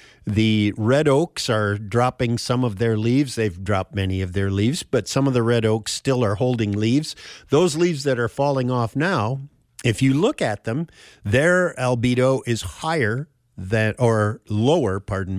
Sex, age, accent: male, 50-69, American